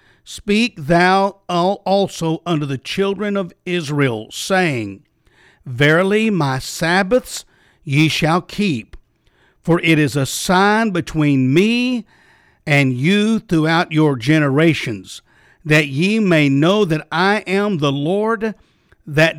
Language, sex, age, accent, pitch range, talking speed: English, male, 50-69, American, 150-225 Hz, 115 wpm